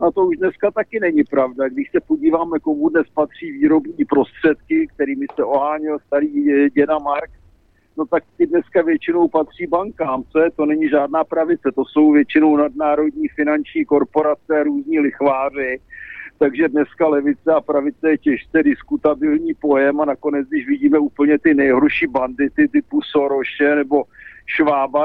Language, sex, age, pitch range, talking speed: Slovak, male, 50-69, 145-165 Hz, 150 wpm